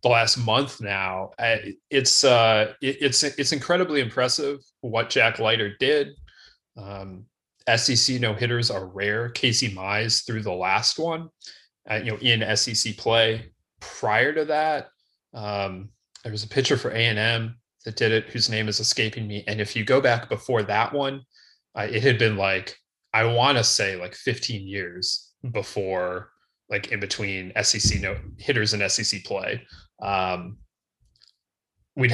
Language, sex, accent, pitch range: English, male, American, 105-130 Hz